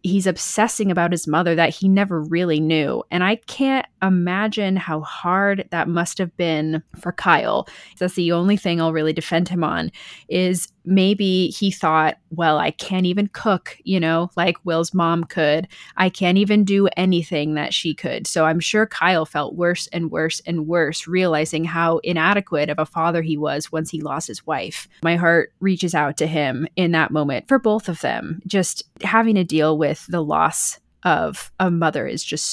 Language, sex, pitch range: English, female, 160-195 Hz